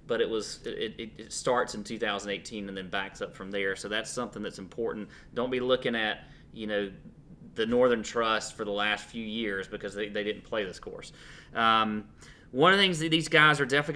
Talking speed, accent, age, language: 215 wpm, American, 30-49, English